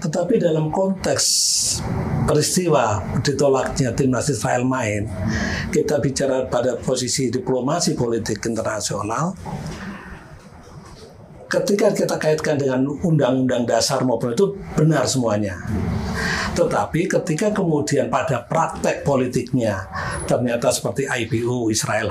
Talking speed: 95 wpm